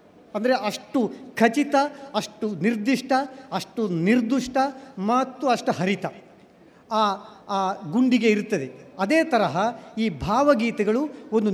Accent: native